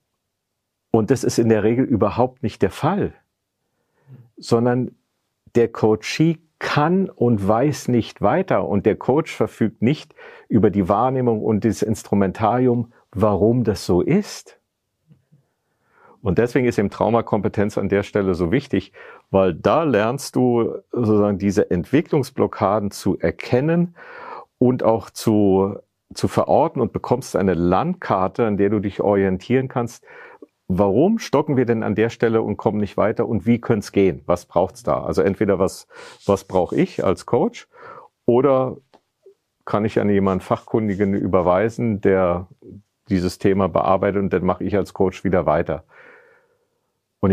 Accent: German